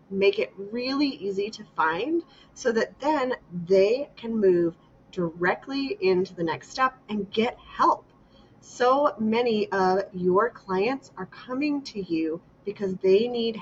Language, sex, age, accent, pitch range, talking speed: English, female, 30-49, American, 175-230 Hz, 140 wpm